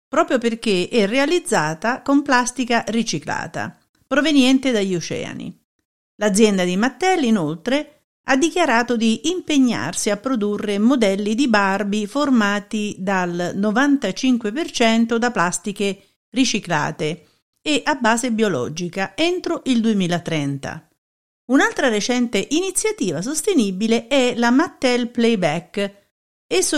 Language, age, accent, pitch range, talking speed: Italian, 50-69, native, 185-265 Hz, 100 wpm